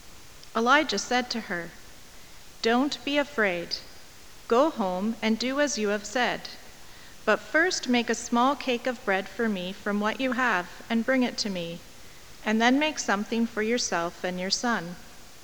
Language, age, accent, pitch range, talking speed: English, 40-59, American, 195-240 Hz, 165 wpm